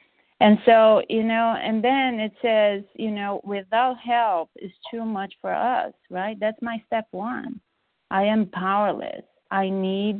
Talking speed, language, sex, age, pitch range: 160 wpm, English, female, 30-49, 190-225 Hz